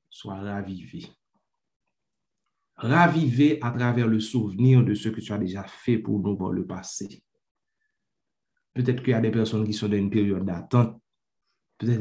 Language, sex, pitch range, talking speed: French, male, 105-125 Hz, 160 wpm